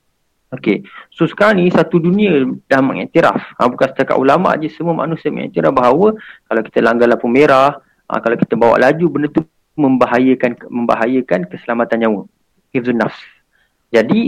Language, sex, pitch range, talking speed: Malay, male, 115-165 Hz, 145 wpm